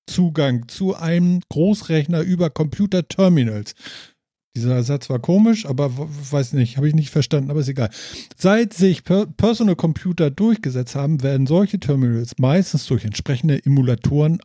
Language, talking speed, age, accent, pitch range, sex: German, 135 wpm, 50-69, German, 130-185 Hz, male